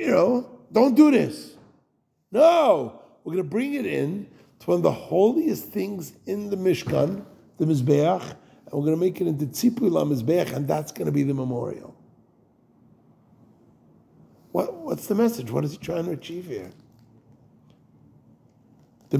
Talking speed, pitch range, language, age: 160 wpm, 135-175 Hz, English, 50-69